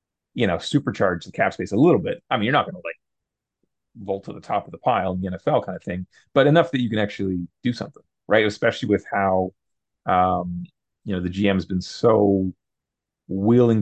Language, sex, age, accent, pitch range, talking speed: English, male, 30-49, American, 95-120 Hz, 215 wpm